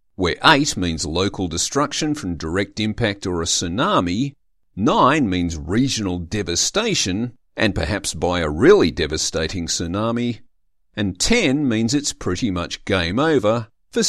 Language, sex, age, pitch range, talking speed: English, male, 50-69, 85-125 Hz, 130 wpm